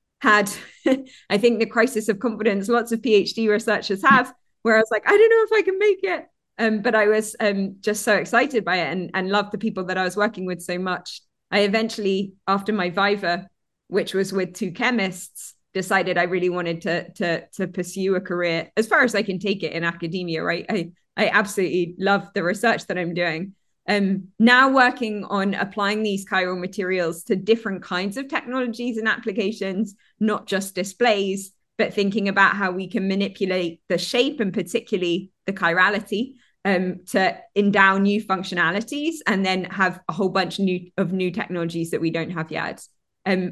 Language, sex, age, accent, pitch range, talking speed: English, female, 20-39, British, 185-225 Hz, 190 wpm